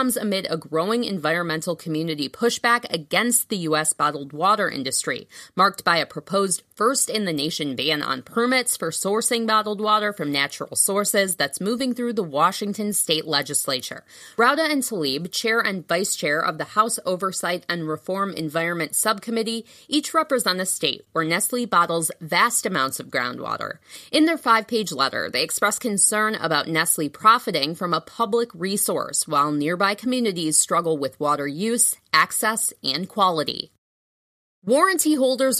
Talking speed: 145 wpm